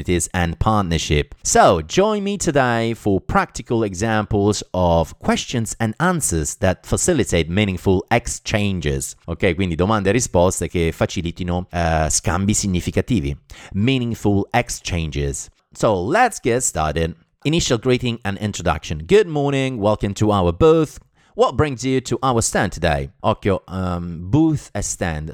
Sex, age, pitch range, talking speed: male, 30-49, 85-110 Hz, 130 wpm